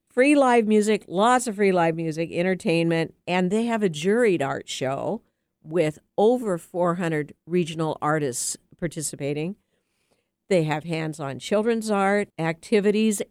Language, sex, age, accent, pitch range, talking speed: English, female, 60-79, American, 155-200 Hz, 125 wpm